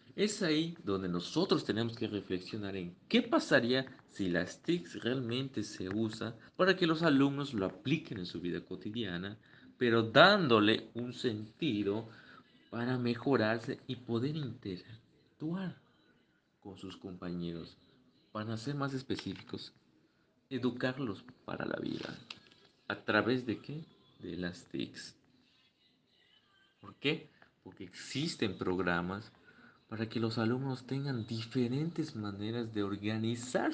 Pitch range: 105-140 Hz